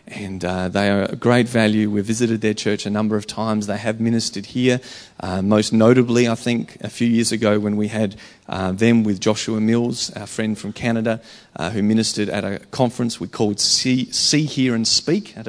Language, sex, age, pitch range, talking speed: English, male, 30-49, 105-135 Hz, 210 wpm